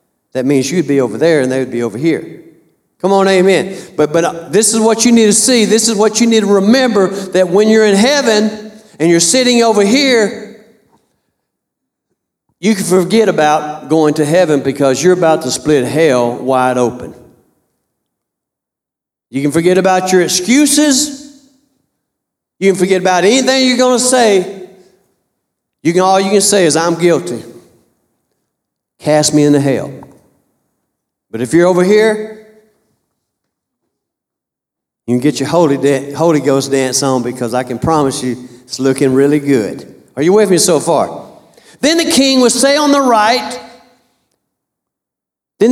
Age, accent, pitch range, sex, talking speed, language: 60-79, American, 150-225 Hz, male, 160 wpm, English